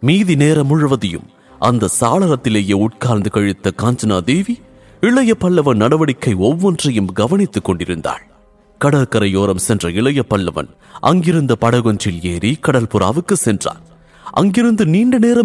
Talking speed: 85 wpm